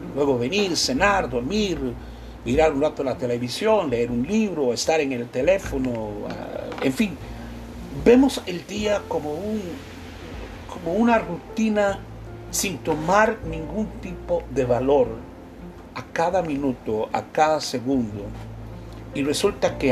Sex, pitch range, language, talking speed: male, 120-200 Hz, Spanish, 125 wpm